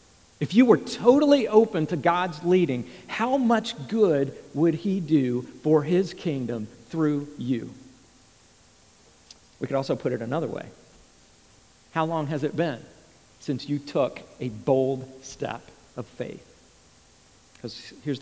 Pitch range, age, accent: 130-170 Hz, 50-69, American